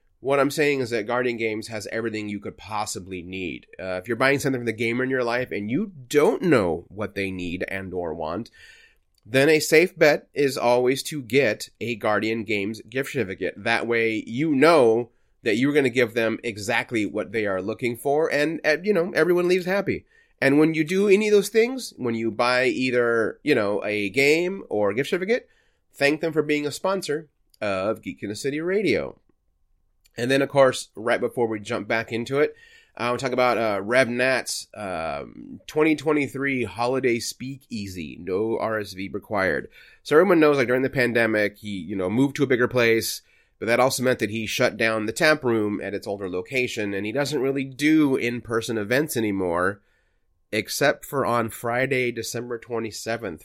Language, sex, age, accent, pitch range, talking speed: English, male, 30-49, American, 110-140 Hz, 190 wpm